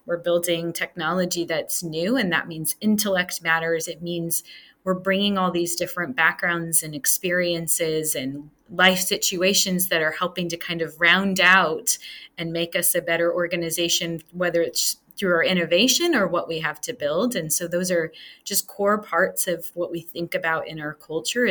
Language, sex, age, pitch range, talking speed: English, female, 30-49, 165-190 Hz, 175 wpm